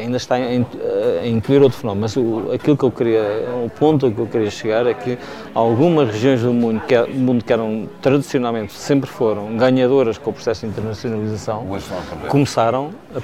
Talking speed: 160 wpm